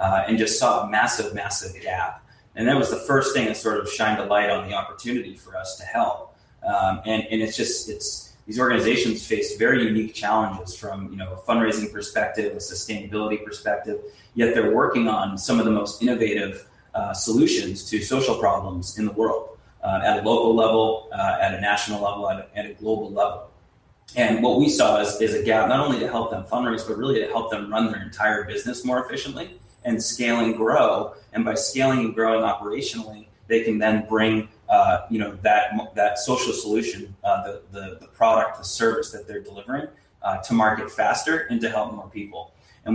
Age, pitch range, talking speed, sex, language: 30-49, 105-115 Hz, 205 wpm, male, English